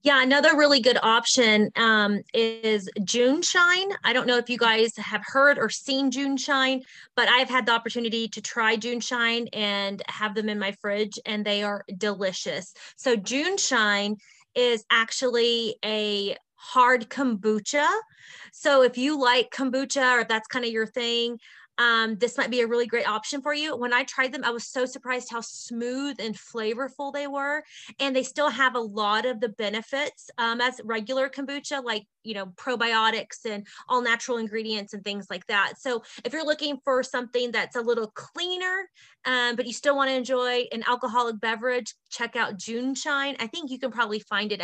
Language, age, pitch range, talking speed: English, 30-49, 220-270 Hz, 185 wpm